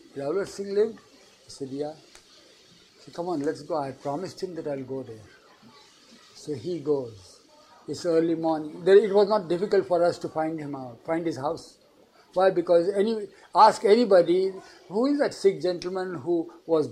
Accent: Indian